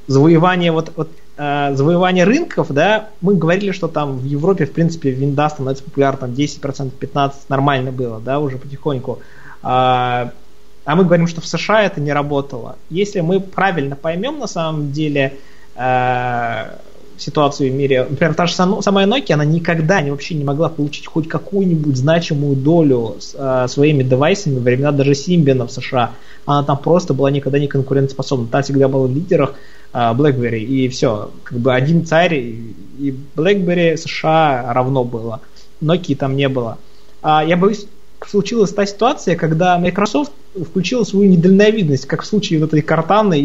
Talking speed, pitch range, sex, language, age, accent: 165 wpm, 135-175 Hz, male, Russian, 20-39, native